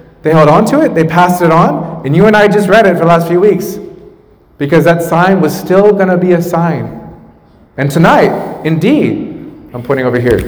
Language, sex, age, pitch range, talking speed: English, male, 30-49, 150-185 Hz, 220 wpm